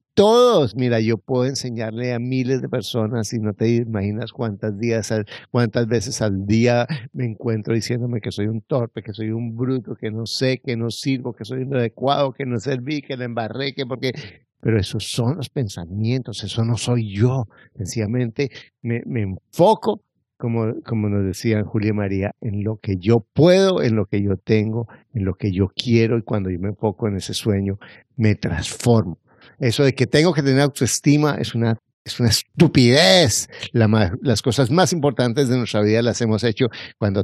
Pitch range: 110-135 Hz